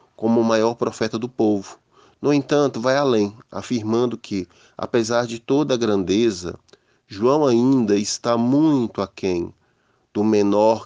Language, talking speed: Portuguese, 135 wpm